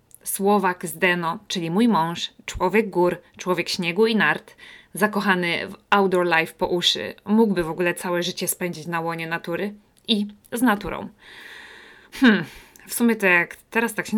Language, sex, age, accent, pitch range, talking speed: English, female, 20-39, Polish, 175-225 Hz, 160 wpm